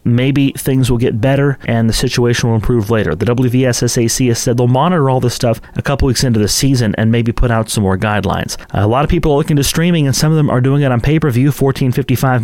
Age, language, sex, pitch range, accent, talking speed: 30-49, English, male, 120-145 Hz, American, 245 wpm